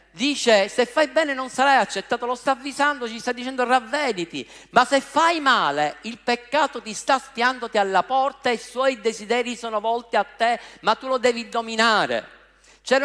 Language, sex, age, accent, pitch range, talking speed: Italian, male, 50-69, native, 235-280 Hz, 180 wpm